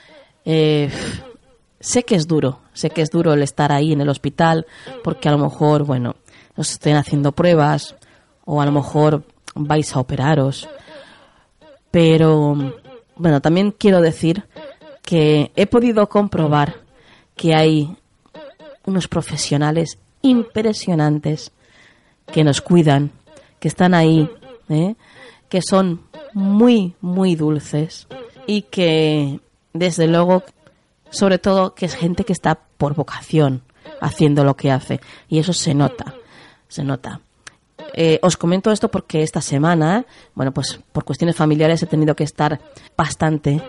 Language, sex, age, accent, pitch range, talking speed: Spanish, female, 30-49, Spanish, 150-180 Hz, 135 wpm